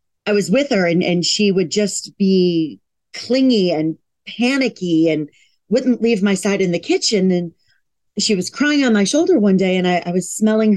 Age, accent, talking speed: 40-59, American, 195 wpm